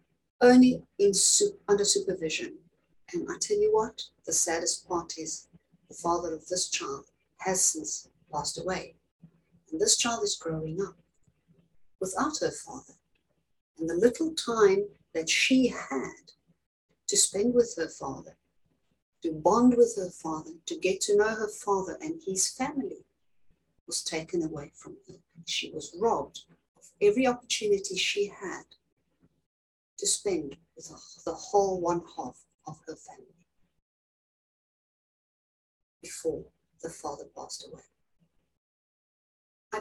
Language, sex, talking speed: English, female, 130 wpm